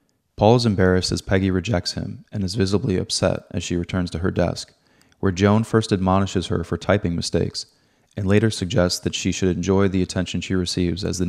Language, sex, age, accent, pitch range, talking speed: English, male, 20-39, American, 90-100 Hz, 200 wpm